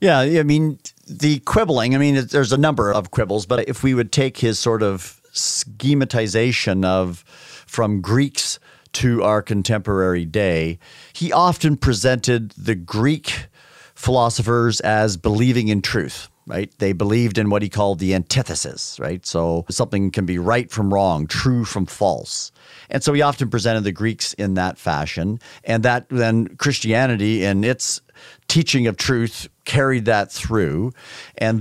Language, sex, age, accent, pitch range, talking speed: English, male, 50-69, American, 95-125 Hz, 155 wpm